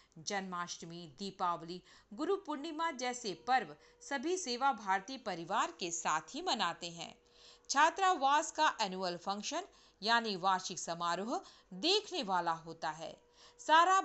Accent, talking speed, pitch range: native, 115 wpm, 185-300 Hz